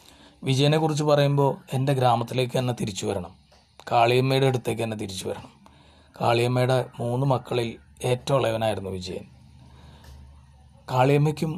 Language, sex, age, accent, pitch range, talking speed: Malayalam, male, 30-49, native, 115-140 Hz, 95 wpm